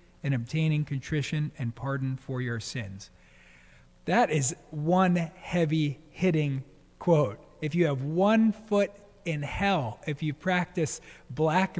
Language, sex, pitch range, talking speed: English, male, 125-160 Hz, 125 wpm